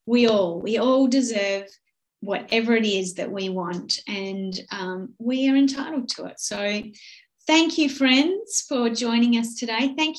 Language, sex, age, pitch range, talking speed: English, female, 30-49, 215-280 Hz, 160 wpm